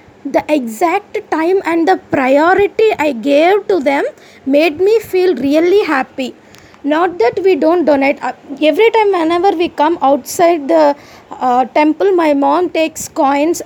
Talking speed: 145 wpm